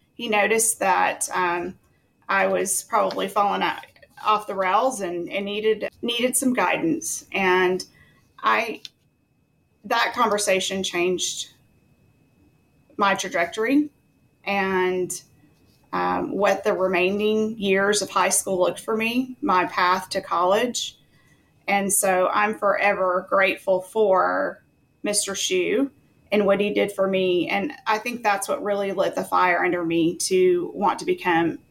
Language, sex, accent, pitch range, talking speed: English, female, American, 180-215 Hz, 130 wpm